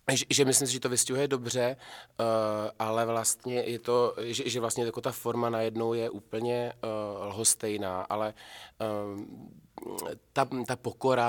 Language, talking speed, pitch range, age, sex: Czech, 155 wpm, 105-115 Hz, 20-39, male